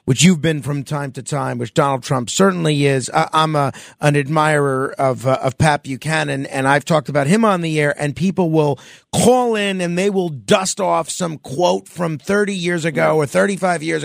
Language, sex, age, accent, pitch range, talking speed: English, male, 40-59, American, 160-210 Hz, 205 wpm